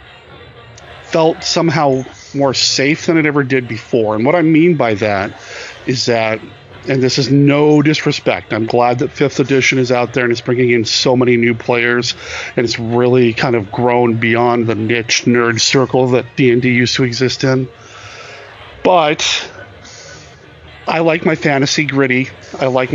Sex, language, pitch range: male, English, 115-135 Hz